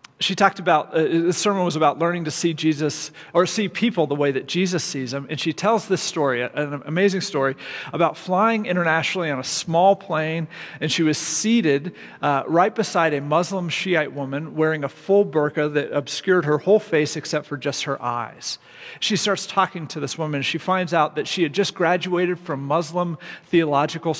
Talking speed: 195 wpm